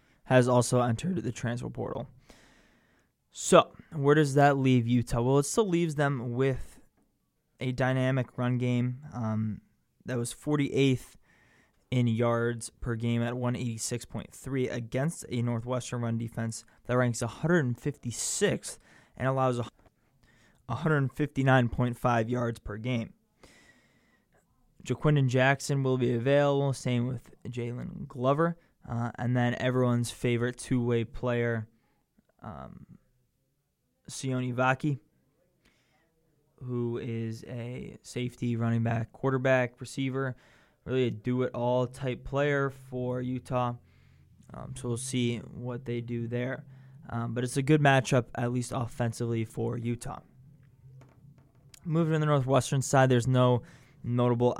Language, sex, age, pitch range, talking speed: English, male, 20-39, 120-135 Hz, 120 wpm